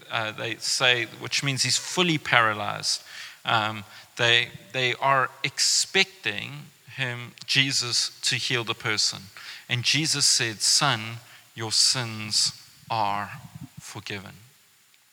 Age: 40-59